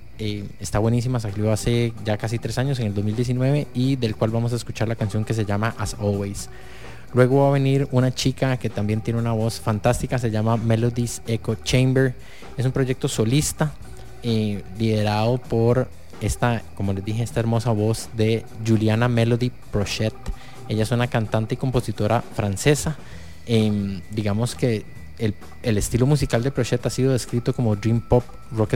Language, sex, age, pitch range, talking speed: English, male, 20-39, 110-125 Hz, 175 wpm